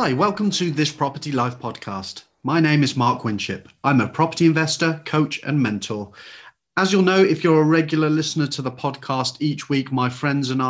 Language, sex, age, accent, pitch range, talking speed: English, male, 30-49, British, 125-160 Hz, 195 wpm